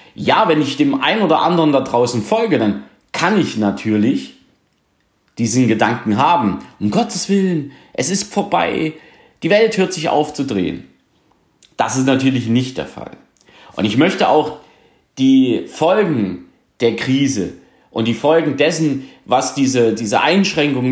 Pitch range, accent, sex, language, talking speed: 115-160 Hz, German, male, German, 150 wpm